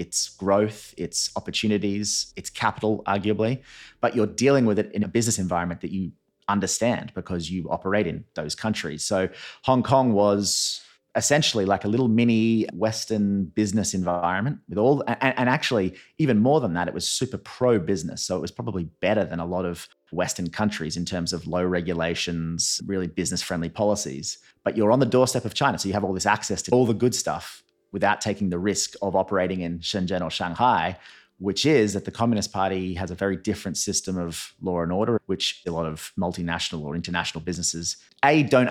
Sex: male